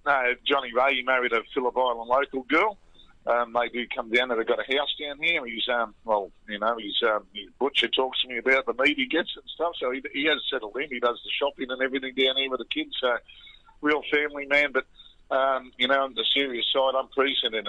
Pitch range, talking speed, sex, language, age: 110-135 Hz, 240 wpm, male, English, 50-69